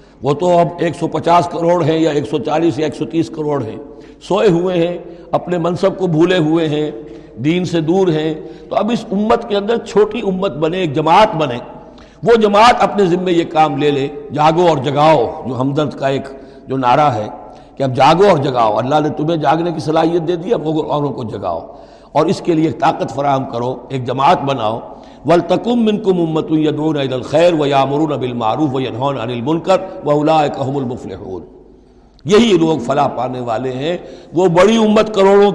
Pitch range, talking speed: 145-180 Hz, 190 wpm